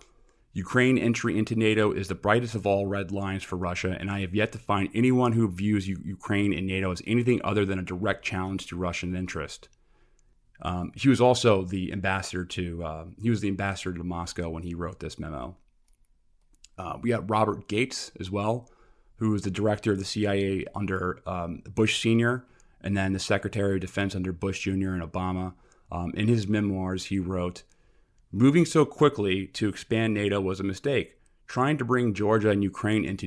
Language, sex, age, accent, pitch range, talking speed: English, male, 30-49, American, 95-110 Hz, 190 wpm